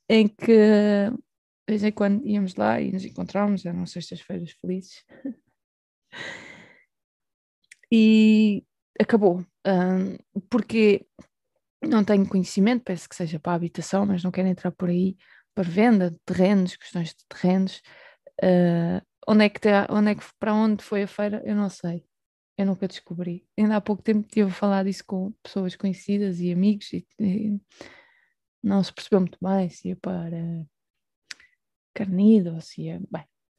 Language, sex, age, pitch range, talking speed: Portuguese, female, 20-39, 185-220 Hz, 150 wpm